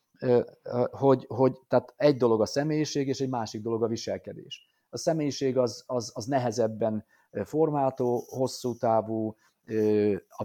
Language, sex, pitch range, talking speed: Hungarian, male, 115-135 Hz, 125 wpm